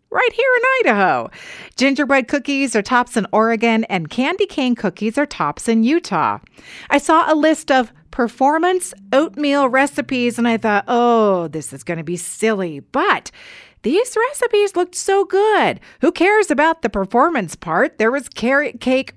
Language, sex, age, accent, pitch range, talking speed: English, female, 40-59, American, 225-345 Hz, 165 wpm